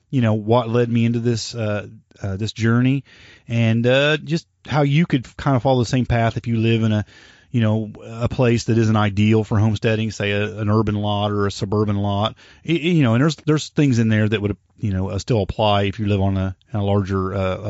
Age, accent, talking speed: 30-49, American, 245 wpm